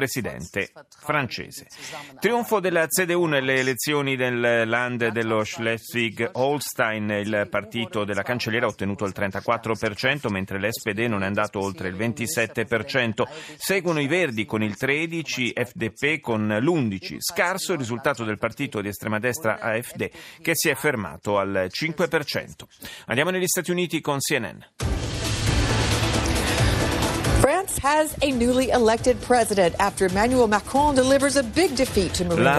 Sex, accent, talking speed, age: male, native, 110 wpm, 40-59